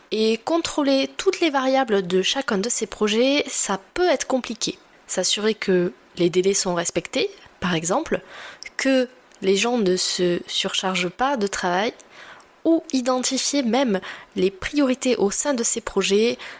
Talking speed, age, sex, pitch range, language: 150 wpm, 20-39, female, 195-255 Hz, French